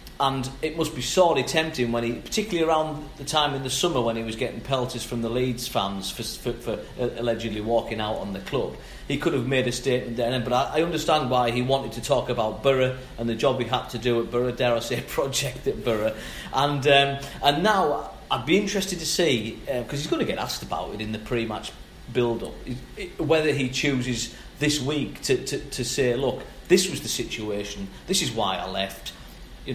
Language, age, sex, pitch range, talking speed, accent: English, 40-59, male, 120-155 Hz, 220 wpm, British